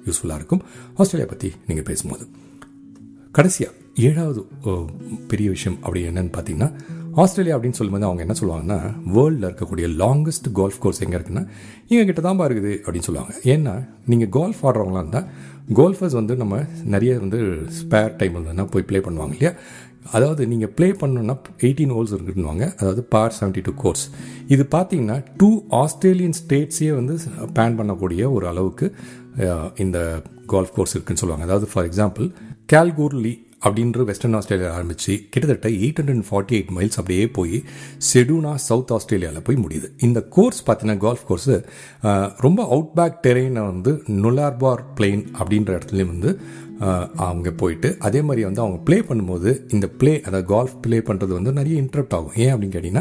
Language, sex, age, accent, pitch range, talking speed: Tamil, male, 40-59, native, 95-140 Hz, 115 wpm